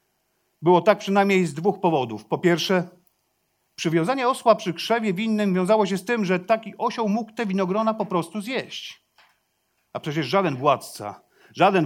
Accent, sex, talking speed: native, male, 155 wpm